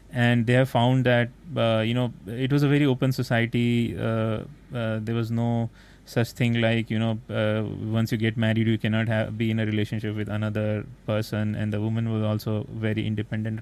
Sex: male